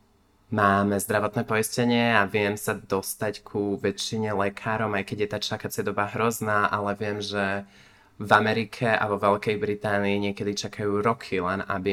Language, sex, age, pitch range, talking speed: Slovak, male, 20-39, 100-110 Hz, 155 wpm